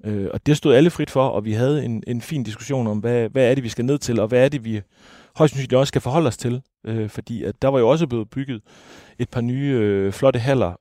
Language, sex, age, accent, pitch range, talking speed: Danish, male, 30-49, native, 105-135 Hz, 280 wpm